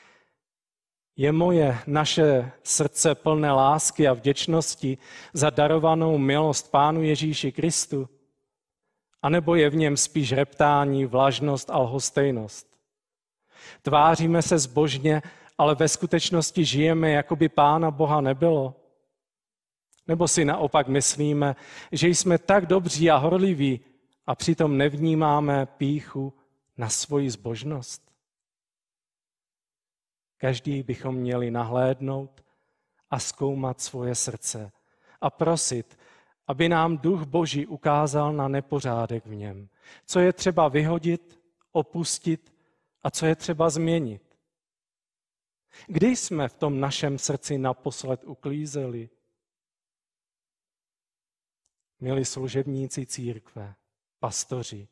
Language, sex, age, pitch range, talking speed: Czech, male, 40-59, 135-160 Hz, 105 wpm